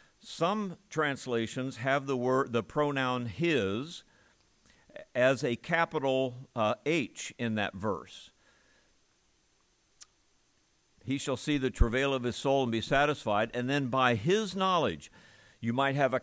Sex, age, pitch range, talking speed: male, 60-79, 120-160 Hz, 135 wpm